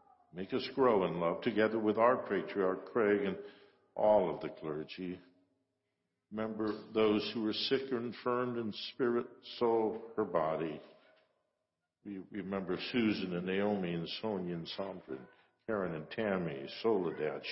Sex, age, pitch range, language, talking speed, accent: male, 60-79, 100-125 Hz, English, 135 wpm, American